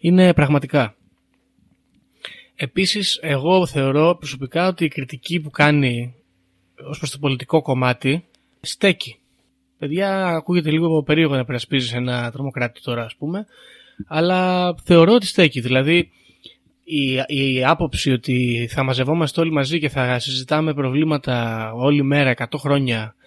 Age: 20-39